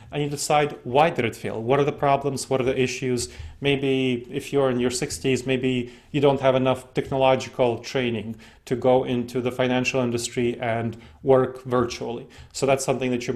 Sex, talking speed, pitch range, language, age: male, 190 wpm, 120-140 Hz, English, 30-49